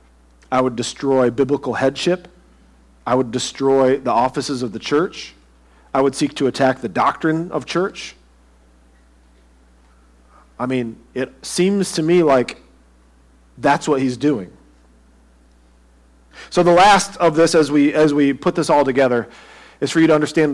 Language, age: English, 40-59